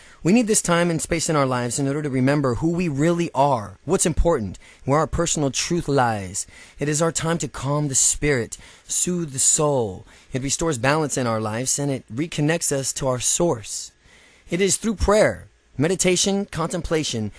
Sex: male